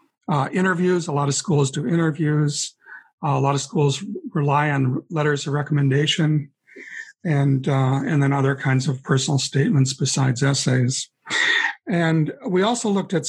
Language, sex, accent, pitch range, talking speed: English, male, American, 140-165 Hz, 155 wpm